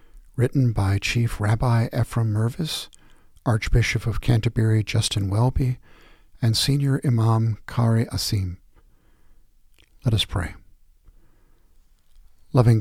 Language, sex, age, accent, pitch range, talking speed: English, male, 50-69, American, 105-120 Hz, 95 wpm